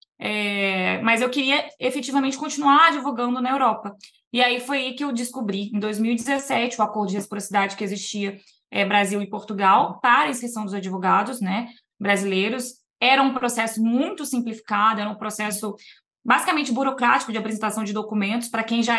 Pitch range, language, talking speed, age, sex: 220-265 Hz, Portuguese, 165 wpm, 20-39, female